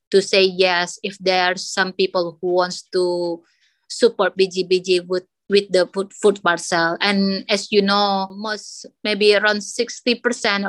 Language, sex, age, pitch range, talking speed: English, female, 20-39, 185-230 Hz, 165 wpm